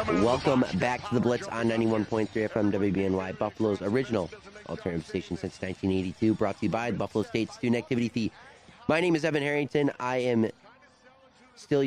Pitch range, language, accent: 100-135 Hz, English, American